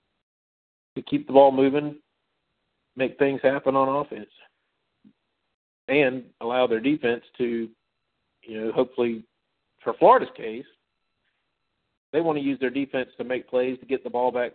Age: 50-69